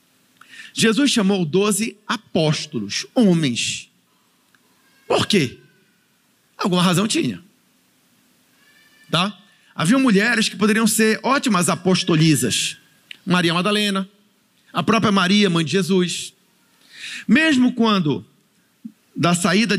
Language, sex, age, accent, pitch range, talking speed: Portuguese, male, 40-59, Brazilian, 175-225 Hz, 90 wpm